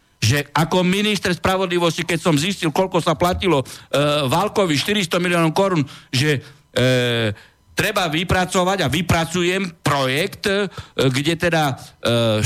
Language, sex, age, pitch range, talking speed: Slovak, male, 60-79, 130-185 Hz, 130 wpm